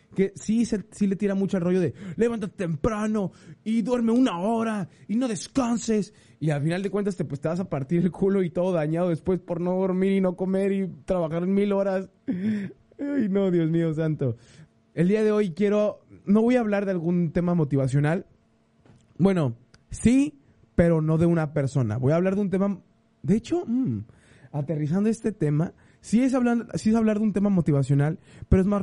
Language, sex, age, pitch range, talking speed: Spanish, male, 20-39, 155-205 Hz, 200 wpm